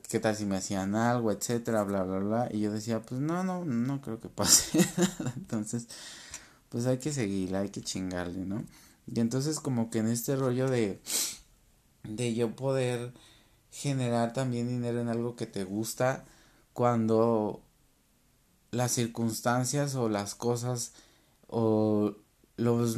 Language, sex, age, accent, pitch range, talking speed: Spanish, male, 30-49, Mexican, 105-120 Hz, 145 wpm